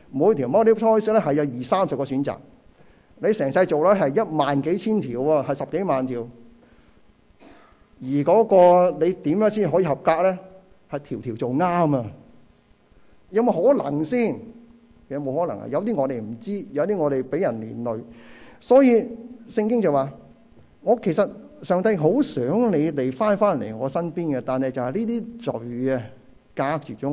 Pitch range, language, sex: 130-180 Hz, Chinese, male